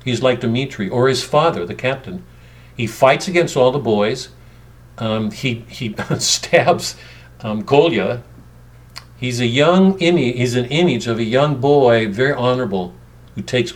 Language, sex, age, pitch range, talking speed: English, male, 50-69, 110-135 Hz, 155 wpm